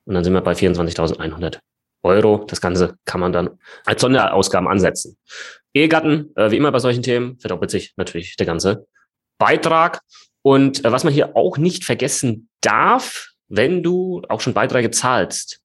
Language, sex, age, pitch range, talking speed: German, male, 30-49, 95-125 Hz, 165 wpm